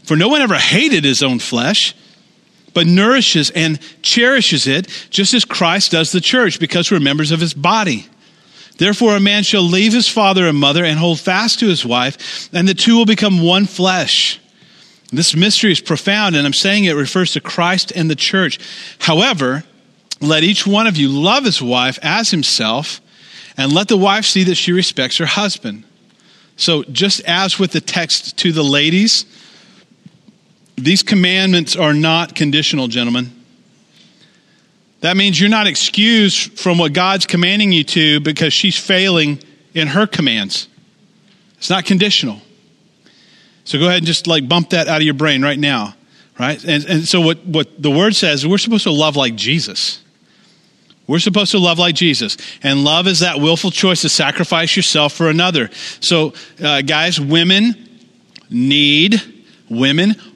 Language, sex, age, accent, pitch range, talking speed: English, male, 40-59, American, 155-200 Hz, 170 wpm